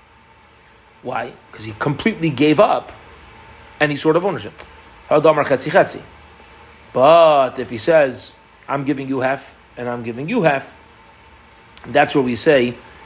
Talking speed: 125 wpm